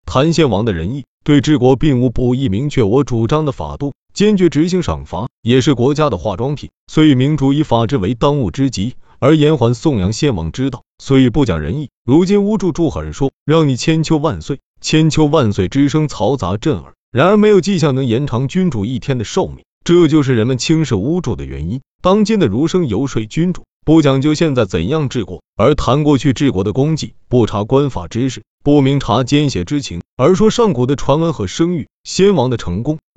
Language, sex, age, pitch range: Chinese, male, 30-49, 120-160 Hz